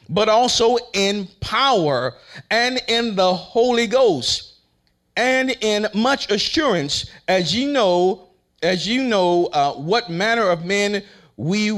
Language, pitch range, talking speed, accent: English, 150-225 Hz, 125 wpm, American